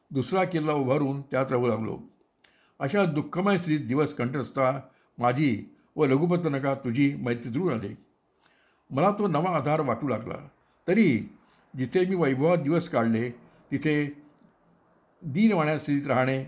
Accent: native